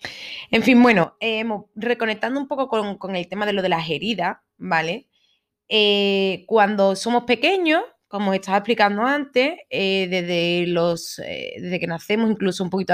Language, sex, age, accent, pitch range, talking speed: Spanish, female, 20-39, Spanish, 180-235 Hz, 165 wpm